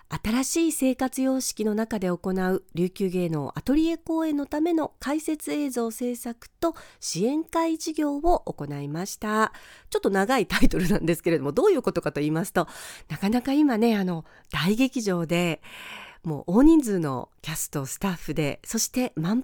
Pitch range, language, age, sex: 175-280 Hz, Japanese, 40-59, female